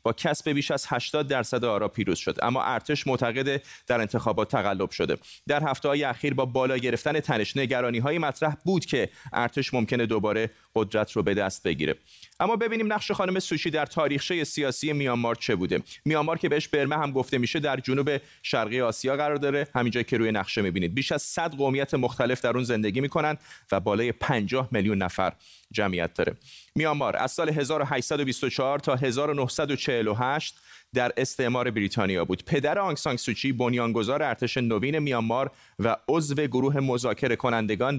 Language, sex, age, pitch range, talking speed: Persian, male, 30-49, 120-150 Hz, 160 wpm